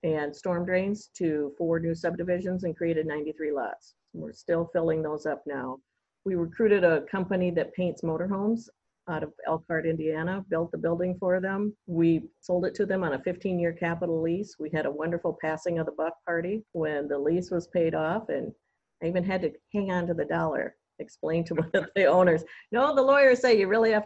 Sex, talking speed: female, 200 wpm